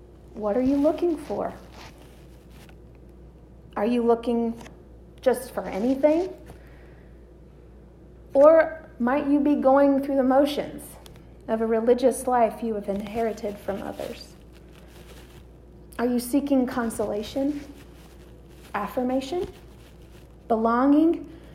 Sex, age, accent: female, 40-59, American